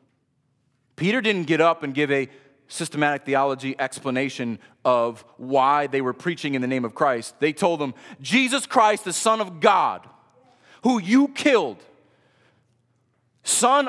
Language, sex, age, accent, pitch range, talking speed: English, male, 30-49, American, 120-175 Hz, 145 wpm